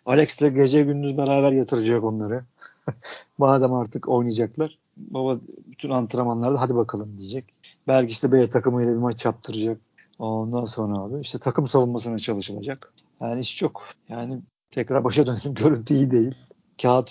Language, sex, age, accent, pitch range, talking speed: Turkish, male, 50-69, native, 115-140 Hz, 145 wpm